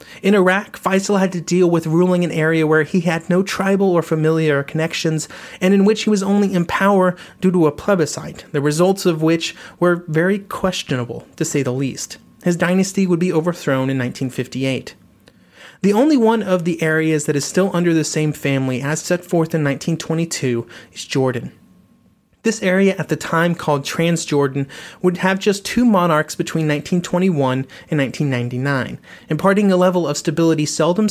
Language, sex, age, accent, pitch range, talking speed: English, male, 30-49, American, 150-185 Hz, 175 wpm